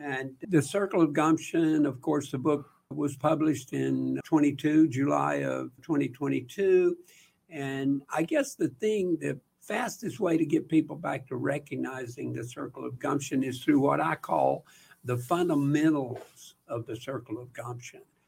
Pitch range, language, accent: 125-155 Hz, English, American